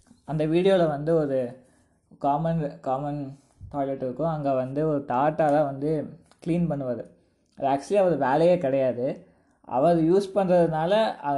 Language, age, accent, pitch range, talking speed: Tamil, 20-39, native, 135-165 Hz, 120 wpm